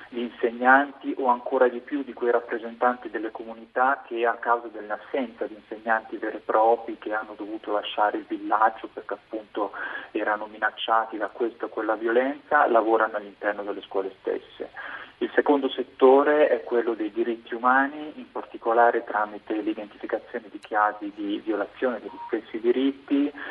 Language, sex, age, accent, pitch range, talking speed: Italian, male, 30-49, native, 115-135 Hz, 155 wpm